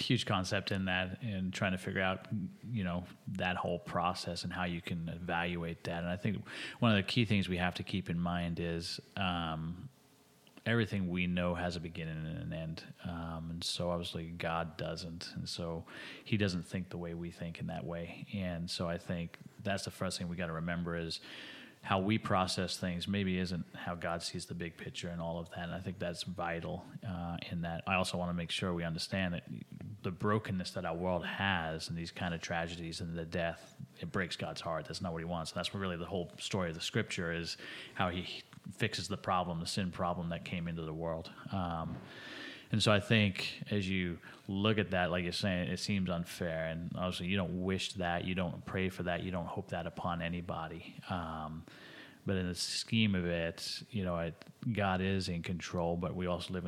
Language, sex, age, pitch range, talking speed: English, male, 30-49, 85-95 Hz, 215 wpm